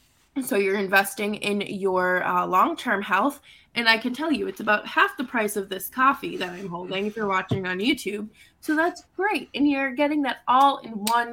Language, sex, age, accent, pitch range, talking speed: English, female, 20-39, American, 210-280 Hz, 195 wpm